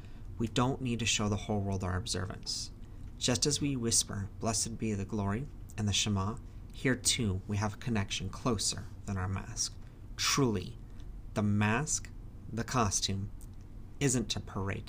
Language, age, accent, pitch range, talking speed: English, 40-59, American, 100-120 Hz, 155 wpm